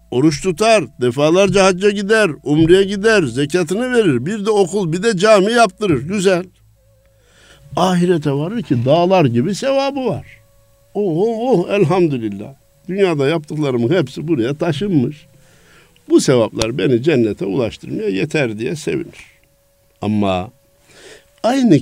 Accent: native